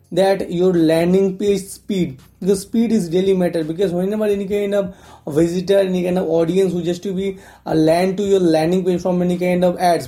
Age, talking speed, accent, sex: 20-39, 210 wpm, Indian, male